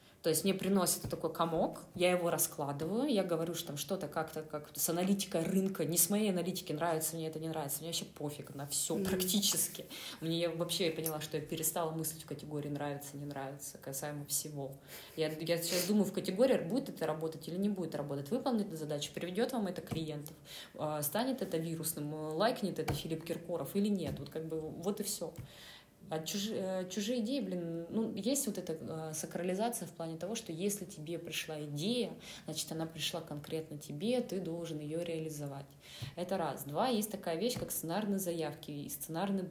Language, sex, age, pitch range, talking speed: Russian, female, 20-39, 155-190 Hz, 185 wpm